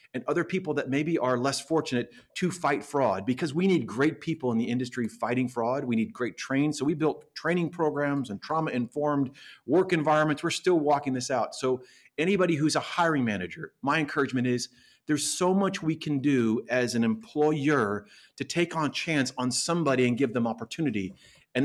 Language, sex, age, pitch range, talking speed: English, male, 40-59, 115-150 Hz, 190 wpm